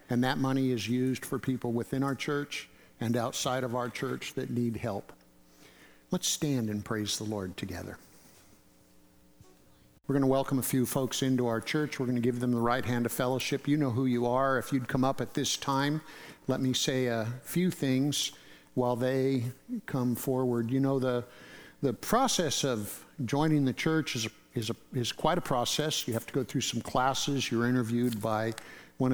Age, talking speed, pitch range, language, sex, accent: 50-69, 195 wpm, 120-140 Hz, English, male, American